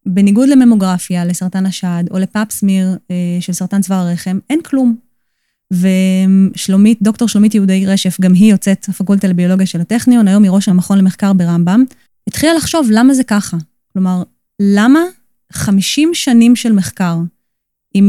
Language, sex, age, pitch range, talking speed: Hebrew, female, 20-39, 190-240 Hz, 145 wpm